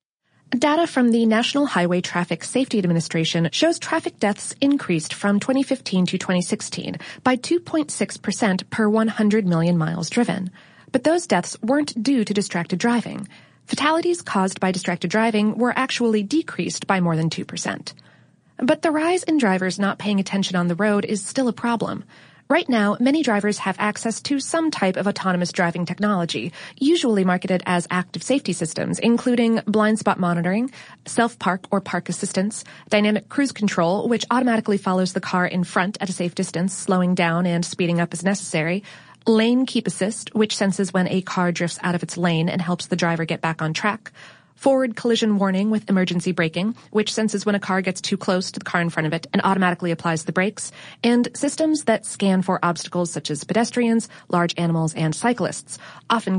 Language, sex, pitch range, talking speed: English, female, 180-235 Hz, 180 wpm